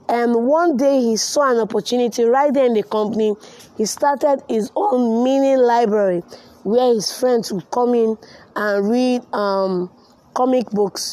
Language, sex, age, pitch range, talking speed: English, female, 20-39, 205-250 Hz, 155 wpm